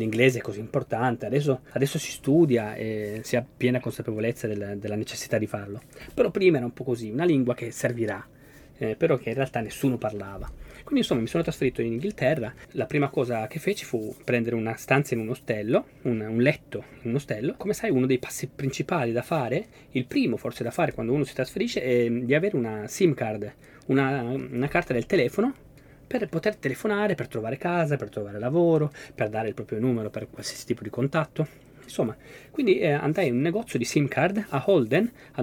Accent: native